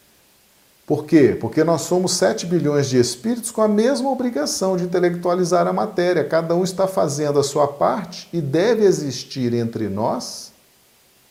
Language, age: Portuguese, 40-59